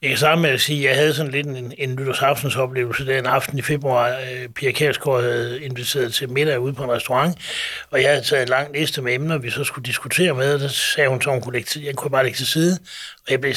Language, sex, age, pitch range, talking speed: Danish, male, 60-79, 130-155 Hz, 250 wpm